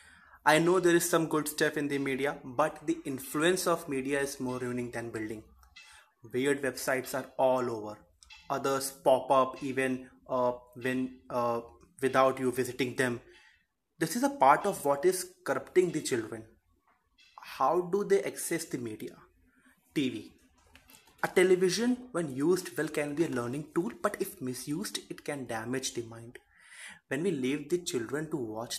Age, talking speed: 20-39, 165 wpm